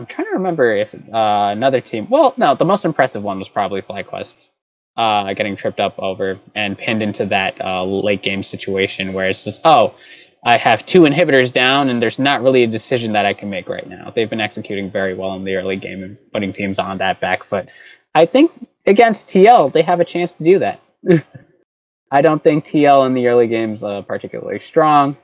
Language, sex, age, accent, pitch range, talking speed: English, male, 20-39, American, 105-140 Hz, 210 wpm